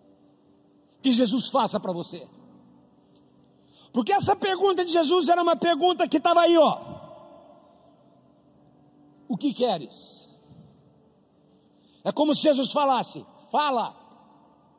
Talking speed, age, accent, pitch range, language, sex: 105 wpm, 50-69, Brazilian, 225-340 Hz, Portuguese, male